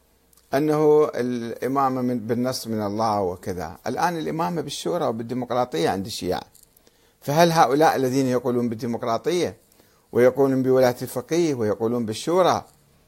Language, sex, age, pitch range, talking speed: Arabic, male, 50-69, 115-170 Hz, 105 wpm